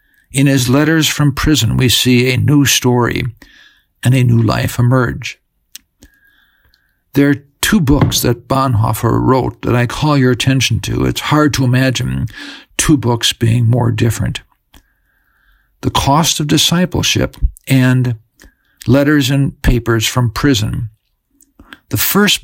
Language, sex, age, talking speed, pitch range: English, male, 50-69, 130 wpm, 120-145 Hz